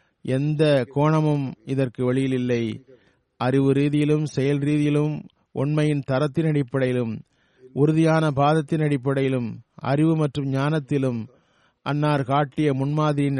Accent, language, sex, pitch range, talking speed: native, Tamil, male, 125-145 Hz, 95 wpm